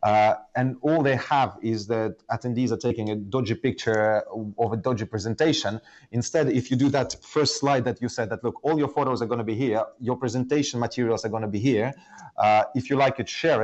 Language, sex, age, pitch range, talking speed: English, male, 30-49, 115-135 Hz, 225 wpm